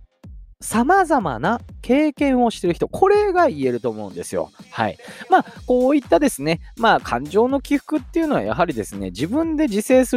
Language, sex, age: Japanese, male, 20-39